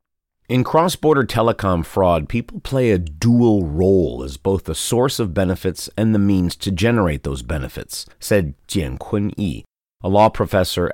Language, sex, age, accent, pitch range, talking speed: English, male, 40-59, American, 85-115 Hz, 155 wpm